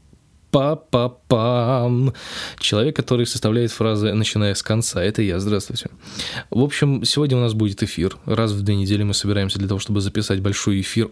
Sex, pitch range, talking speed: male, 100-120 Hz, 160 wpm